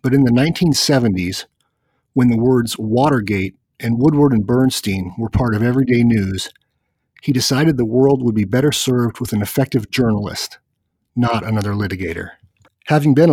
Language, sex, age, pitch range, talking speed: English, male, 40-59, 110-140 Hz, 155 wpm